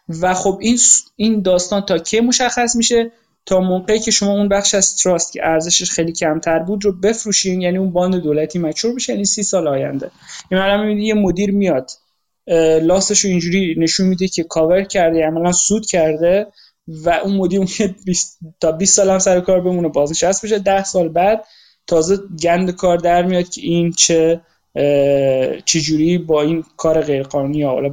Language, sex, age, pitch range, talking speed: Persian, male, 20-39, 160-190 Hz, 185 wpm